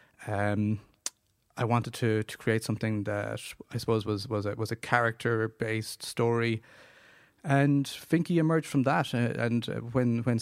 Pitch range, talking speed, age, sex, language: 110-125 Hz, 150 wpm, 30-49, male, English